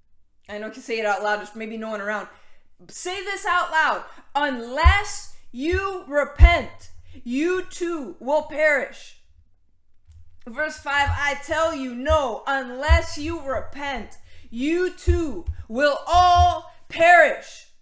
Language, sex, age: English, female, 20-39